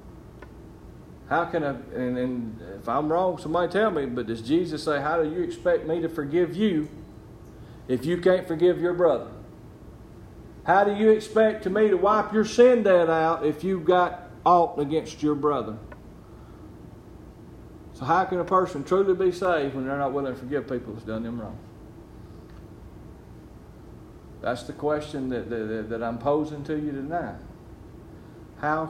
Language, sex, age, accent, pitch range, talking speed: English, male, 40-59, American, 115-160 Hz, 160 wpm